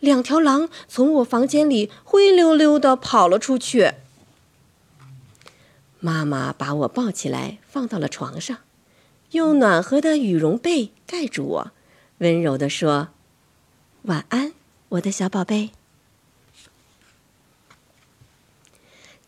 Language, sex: Chinese, female